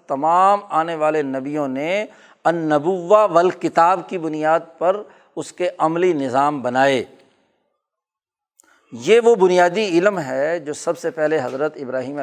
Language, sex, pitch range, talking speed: Urdu, male, 135-160 Hz, 130 wpm